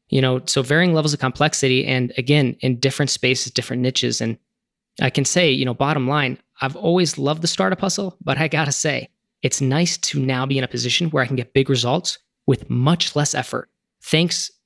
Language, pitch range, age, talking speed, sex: English, 125-150 Hz, 20-39, 210 wpm, male